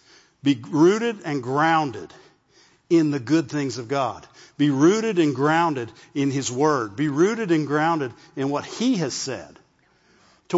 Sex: male